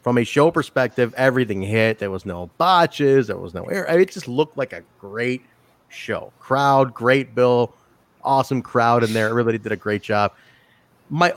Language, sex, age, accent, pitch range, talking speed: English, male, 30-49, American, 115-150 Hz, 180 wpm